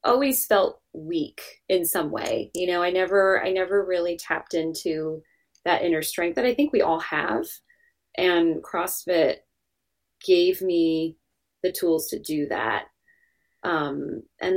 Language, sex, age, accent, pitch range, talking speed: English, female, 20-39, American, 165-200 Hz, 145 wpm